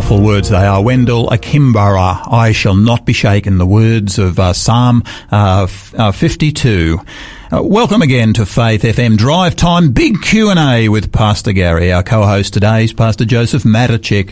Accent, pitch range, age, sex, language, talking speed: Australian, 105-155 Hz, 50-69, male, English, 165 wpm